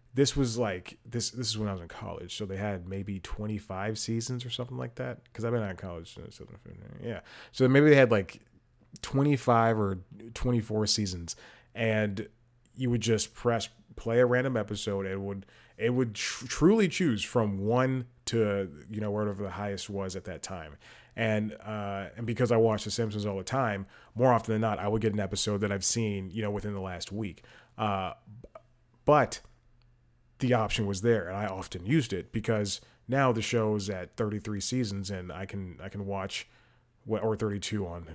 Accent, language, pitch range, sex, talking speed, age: American, English, 100-120 Hz, male, 195 wpm, 30-49